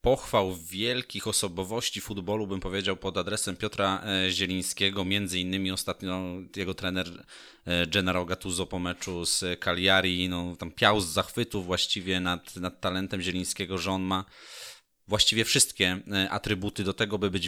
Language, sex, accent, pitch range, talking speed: Polish, male, native, 95-115 Hz, 140 wpm